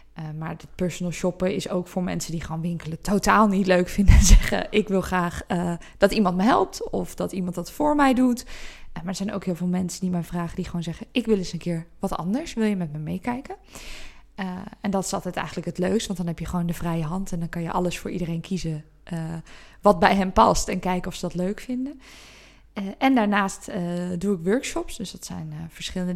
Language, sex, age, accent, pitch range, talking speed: Dutch, female, 20-39, Dutch, 175-200 Hz, 240 wpm